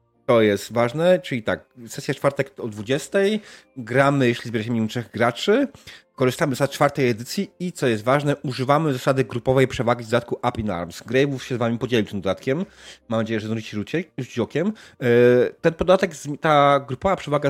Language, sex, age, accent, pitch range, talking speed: Polish, male, 30-49, native, 115-140 Hz, 170 wpm